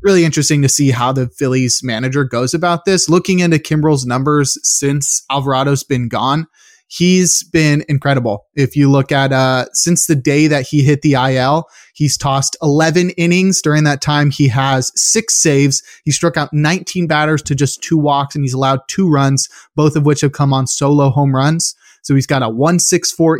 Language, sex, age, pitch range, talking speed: English, male, 20-39, 130-155 Hz, 190 wpm